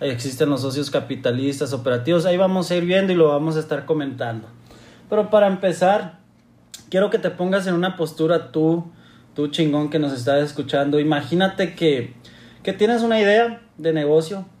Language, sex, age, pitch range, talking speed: Spanish, male, 30-49, 135-170 Hz, 170 wpm